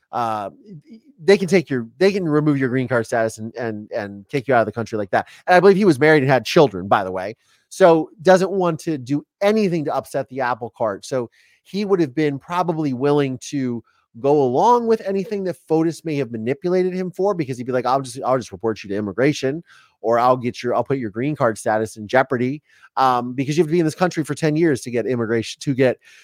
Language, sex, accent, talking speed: English, male, American, 240 wpm